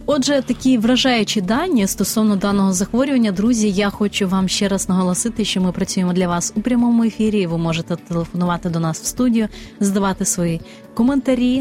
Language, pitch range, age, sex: Ukrainian, 190-235 Hz, 30-49, female